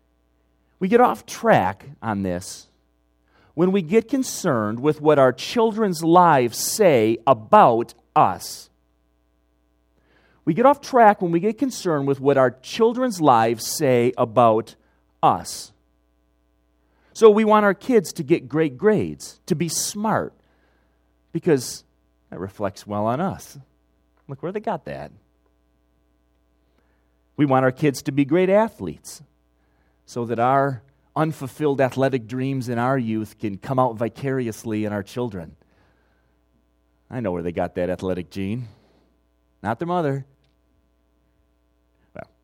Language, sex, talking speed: English, male, 130 wpm